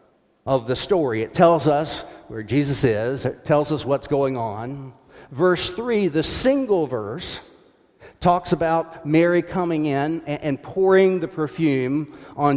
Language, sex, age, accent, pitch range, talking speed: English, male, 50-69, American, 140-200 Hz, 145 wpm